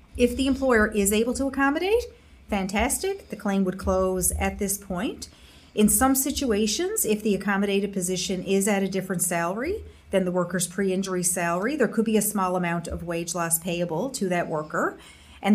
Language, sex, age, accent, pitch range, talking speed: English, female, 30-49, American, 170-205 Hz, 180 wpm